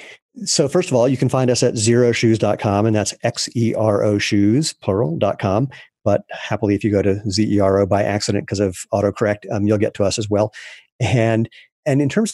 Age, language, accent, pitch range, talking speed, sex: 40-59, English, American, 100-115 Hz, 185 wpm, male